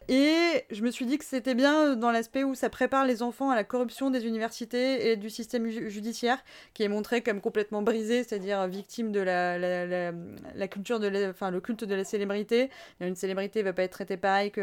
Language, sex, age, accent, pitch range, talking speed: French, female, 20-39, French, 200-240 Hz, 220 wpm